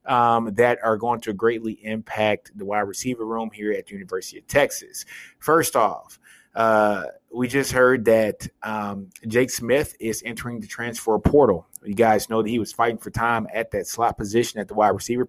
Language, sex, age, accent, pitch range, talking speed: English, male, 20-39, American, 105-120 Hz, 190 wpm